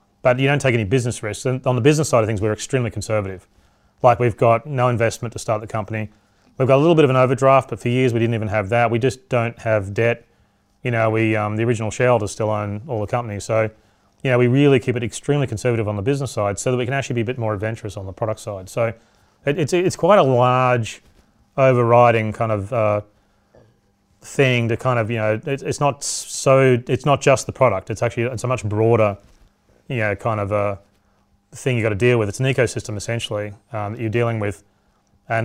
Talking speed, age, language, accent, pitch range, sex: 235 wpm, 30-49, English, Australian, 105-125 Hz, male